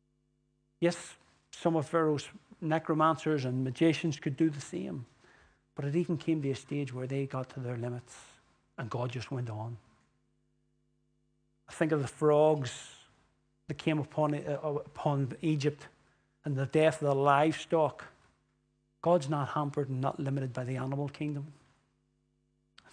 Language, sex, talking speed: English, male, 150 wpm